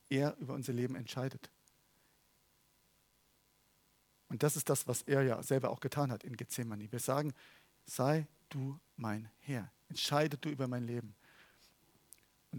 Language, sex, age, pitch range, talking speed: German, male, 50-69, 125-150 Hz, 145 wpm